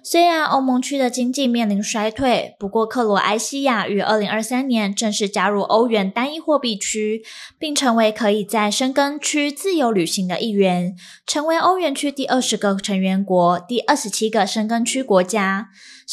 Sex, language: female, Chinese